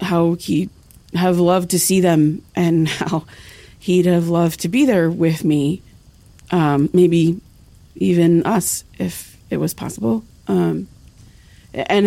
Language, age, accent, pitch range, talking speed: English, 30-49, American, 155-185 Hz, 135 wpm